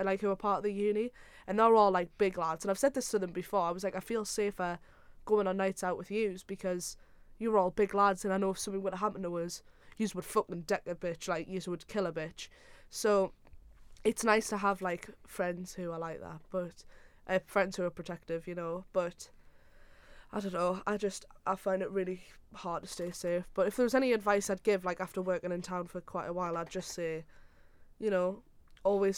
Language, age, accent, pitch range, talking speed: English, 20-39, British, 180-205 Hz, 235 wpm